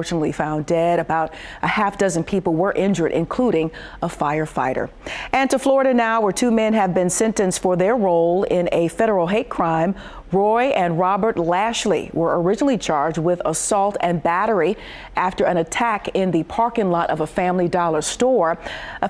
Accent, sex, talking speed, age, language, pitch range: American, female, 170 wpm, 40-59, English, 170-210 Hz